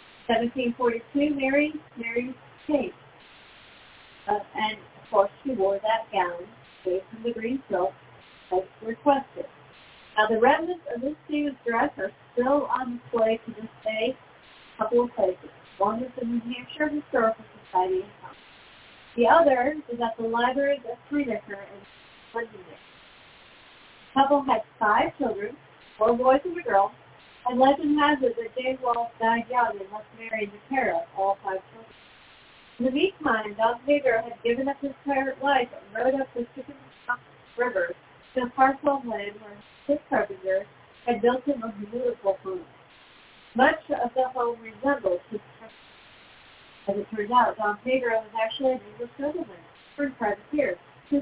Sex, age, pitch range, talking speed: female, 40-59, 215-270 Hz, 160 wpm